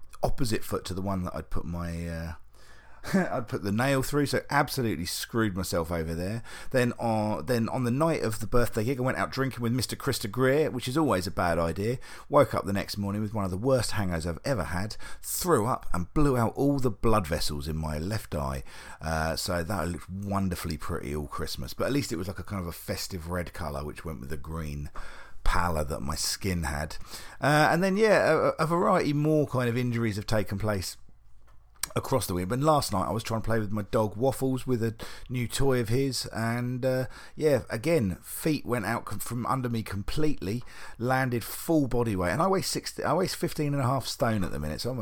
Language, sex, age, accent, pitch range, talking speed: English, male, 40-59, British, 90-125 Hz, 225 wpm